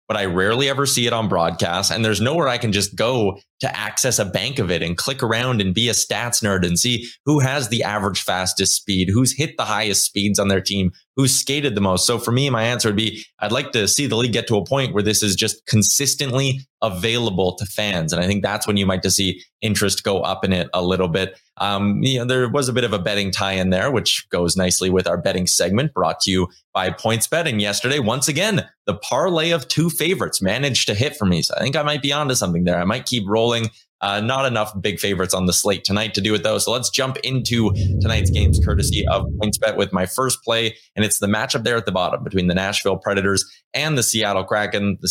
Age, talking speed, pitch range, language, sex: 20-39, 250 wpm, 95-125 Hz, English, male